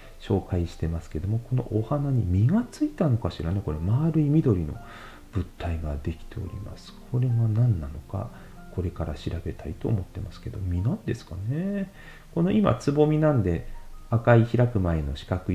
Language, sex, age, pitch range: Japanese, male, 40-59, 90-125 Hz